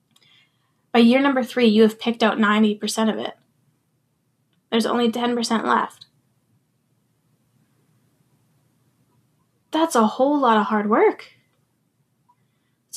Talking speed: 105 wpm